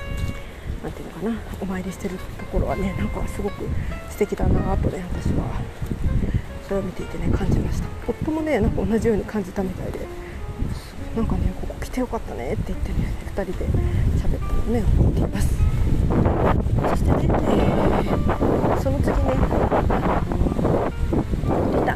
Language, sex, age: Japanese, female, 40-59